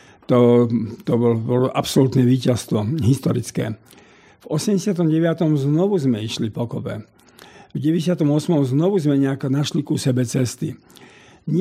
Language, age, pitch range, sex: Slovak, 50-69, 130-155 Hz, male